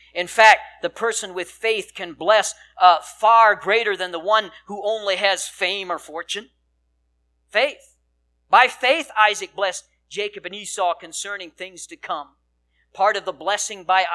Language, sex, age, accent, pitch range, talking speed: English, male, 50-69, American, 175-230 Hz, 155 wpm